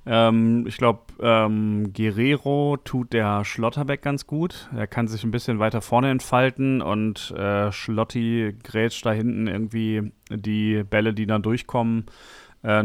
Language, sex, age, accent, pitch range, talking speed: German, male, 30-49, German, 110-130 Hz, 145 wpm